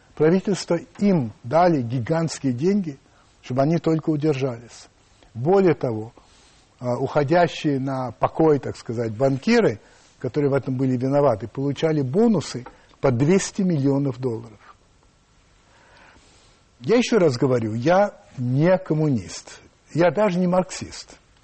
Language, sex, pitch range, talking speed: Russian, male, 115-170 Hz, 110 wpm